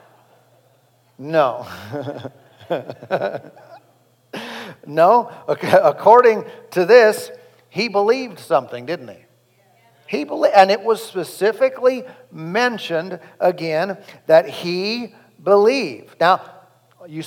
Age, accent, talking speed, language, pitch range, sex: 50-69, American, 75 wpm, English, 160-215 Hz, male